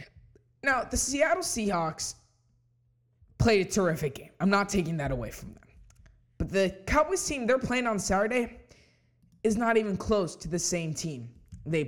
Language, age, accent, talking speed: English, 20-39, American, 160 wpm